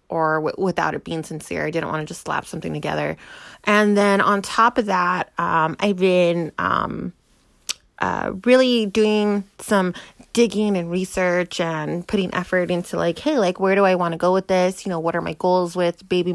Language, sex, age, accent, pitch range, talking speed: English, female, 20-39, American, 175-225 Hz, 200 wpm